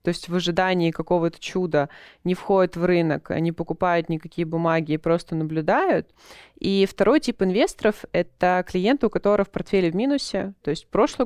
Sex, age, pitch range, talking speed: female, 20-39, 170-220 Hz, 170 wpm